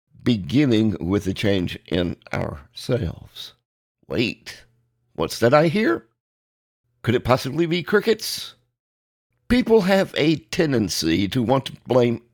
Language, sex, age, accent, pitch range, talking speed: English, male, 50-69, American, 95-135 Hz, 115 wpm